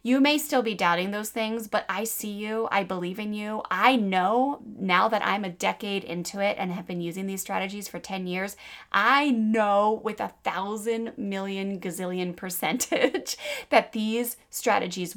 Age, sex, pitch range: 20-39, female, 185-230 Hz